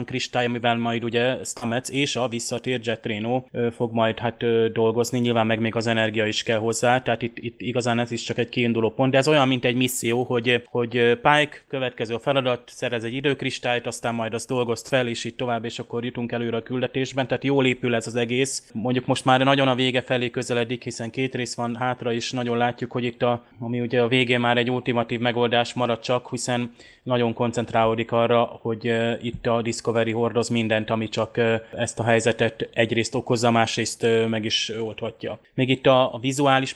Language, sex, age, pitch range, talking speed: Hungarian, male, 20-39, 115-125 Hz, 195 wpm